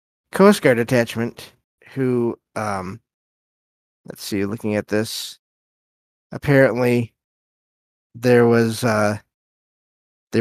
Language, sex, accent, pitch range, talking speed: English, male, American, 105-135 Hz, 85 wpm